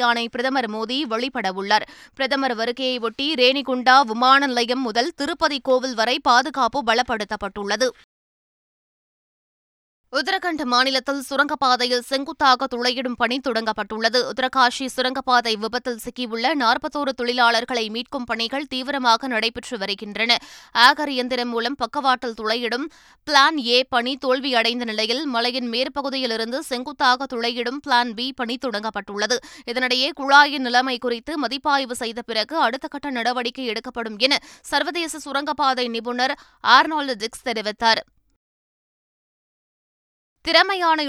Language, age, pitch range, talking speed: Tamil, 20-39, 235-275 Hz, 100 wpm